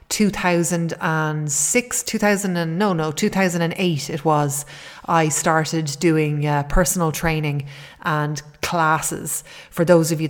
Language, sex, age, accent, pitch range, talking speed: English, female, 30-49, Irish, 160-185 Hz, 110 wpm